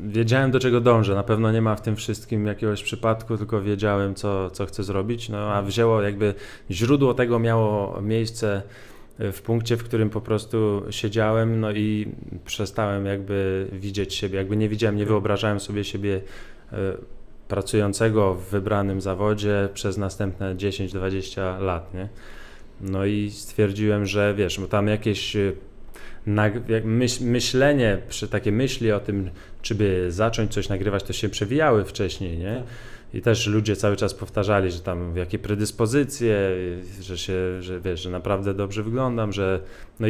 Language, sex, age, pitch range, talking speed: Polish, male, 20-39, 100-110 Hz, 155 wpm